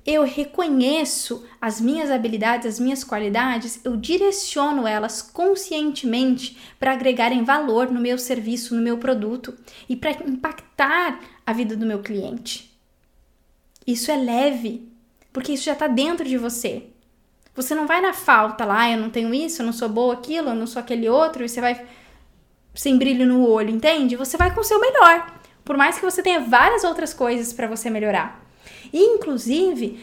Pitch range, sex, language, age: 235-315 Hz, female, Portuguese, 10-29